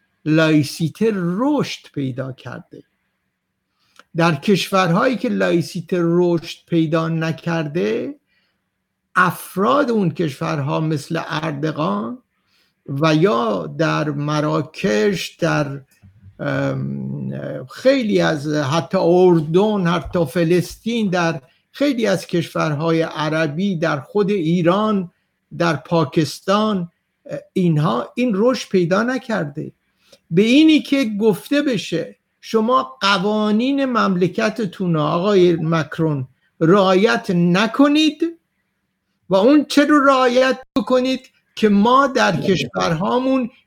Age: 60-79